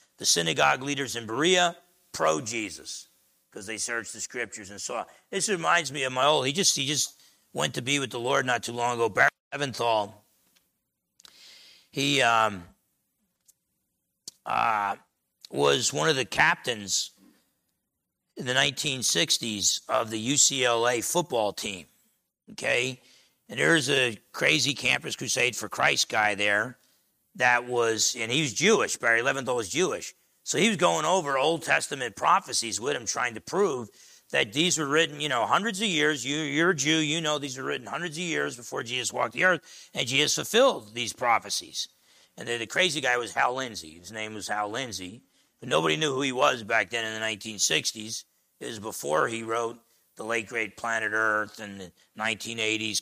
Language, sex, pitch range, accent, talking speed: English, male, 110-150 Hz, American, 170 wpm